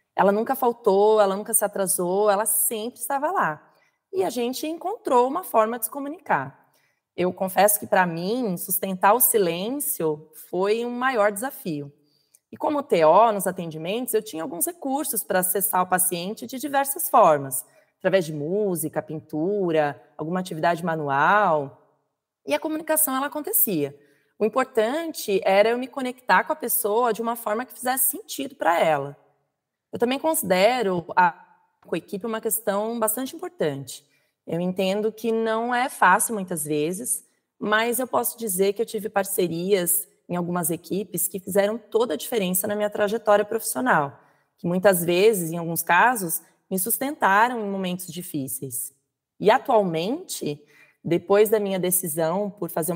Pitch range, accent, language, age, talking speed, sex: 175-245 Hz, Brazilian, Portuguese, 20-39, 150 wpm, female